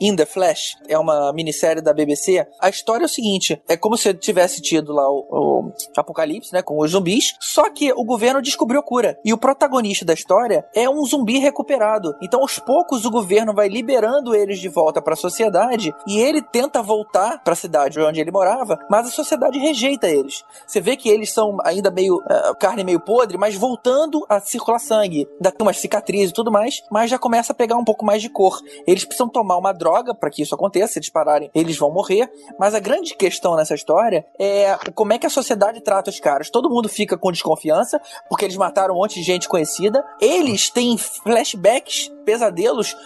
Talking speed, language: 210 wpm, Portuguese